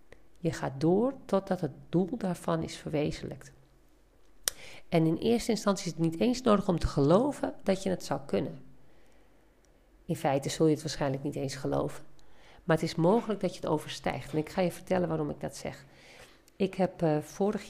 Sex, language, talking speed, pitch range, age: female, Dutch, 190 wpm, 145-185 Hz, 50-69